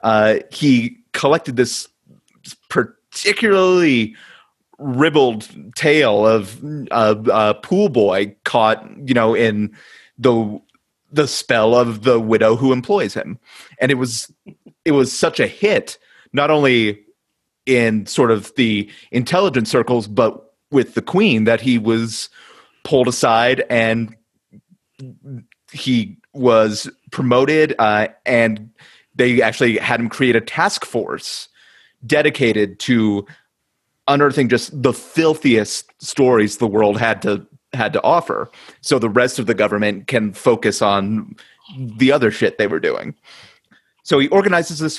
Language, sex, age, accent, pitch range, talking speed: English, male, 30-49, American, 110-140 Hz, 130 wpm